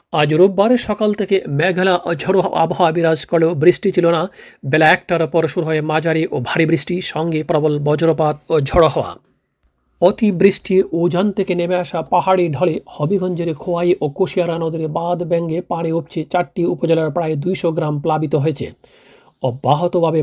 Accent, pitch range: native, 155-175 Hz